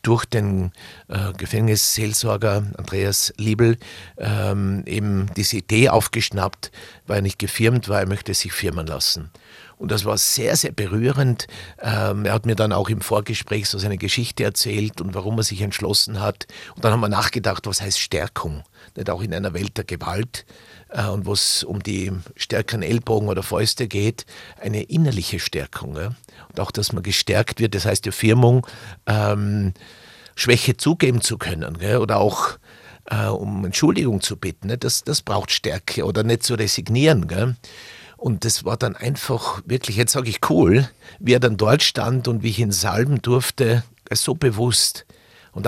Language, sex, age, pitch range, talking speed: German, male, 50-69, 100-115 Hz, 165 wpm